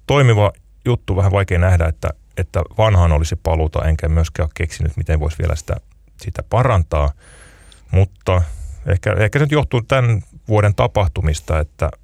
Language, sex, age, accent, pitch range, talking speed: Finnish, male, 30-49, native, 80-100 Hz, 145 wpm